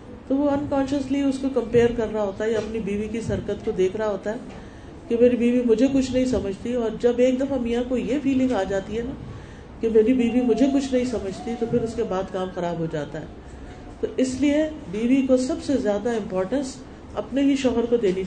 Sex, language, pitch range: female, Urdu, 205-260 Hz